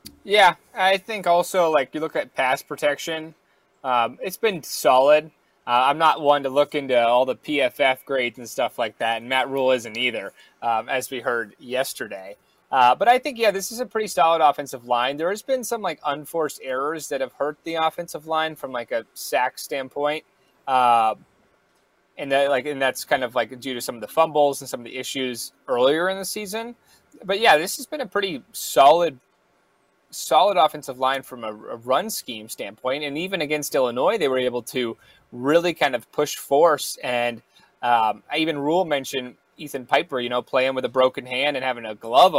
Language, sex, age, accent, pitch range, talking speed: English, male, 20-39, American, 130-175 Hz, 200 wpm